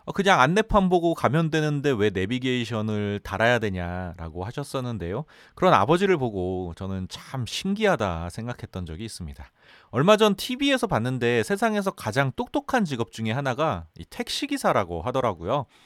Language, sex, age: Korean, male, 30-49